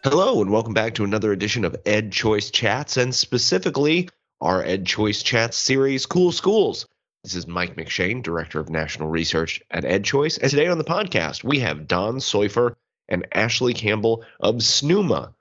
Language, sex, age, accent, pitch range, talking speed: English, male, 30-49, American, 85-115 Hz, 175 wpm